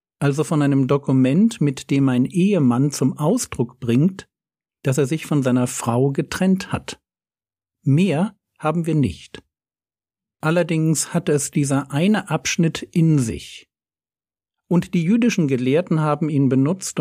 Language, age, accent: German, 50-69, German